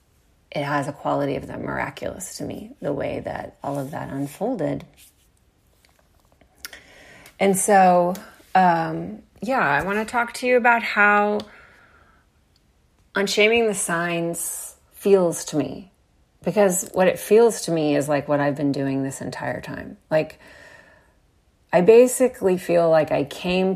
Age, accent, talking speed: 30-49, American, 140 wpm